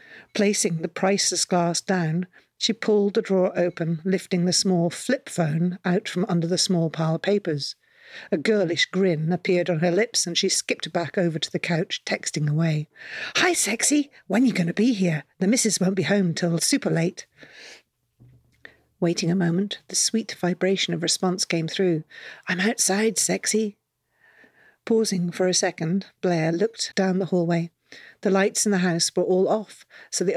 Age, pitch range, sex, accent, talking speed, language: 50-69, 170-200 Hz, female, British, 175 wpm, English